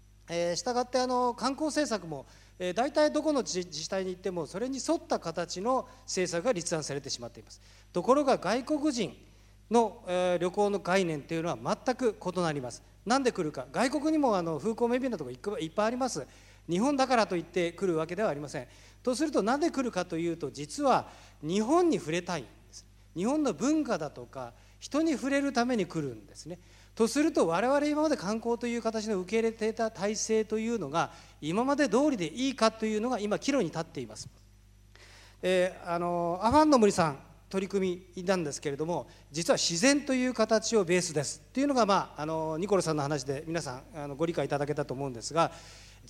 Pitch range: 150-240 Hz